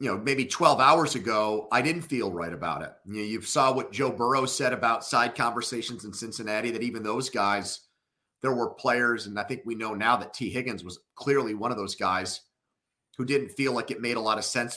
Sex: male